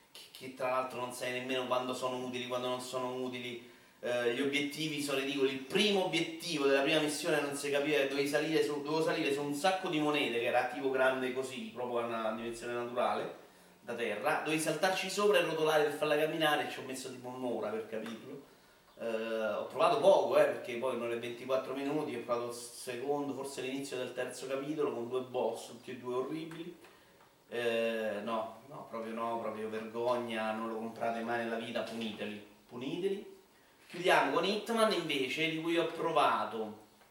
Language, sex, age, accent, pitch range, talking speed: Italian, male, 30-49, native, 120-155 Hz, 185 wpm